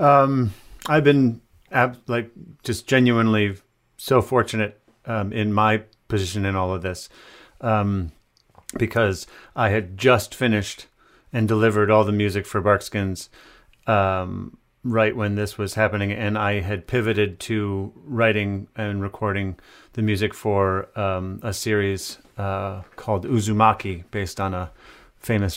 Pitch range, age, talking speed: 100-115 Hz, 30-49, 135 wpm